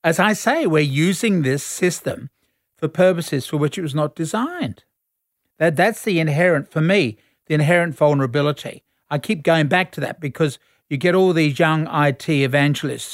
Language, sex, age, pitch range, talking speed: English, male, 50-69, 135-165 Hz, 175 wpm